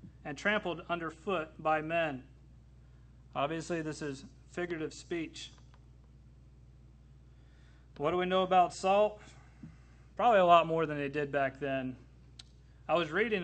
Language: English